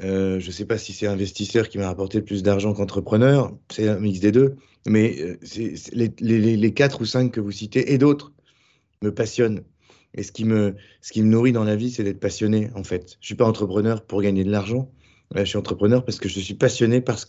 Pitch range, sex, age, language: 100-120 Hz, male, 20-39, French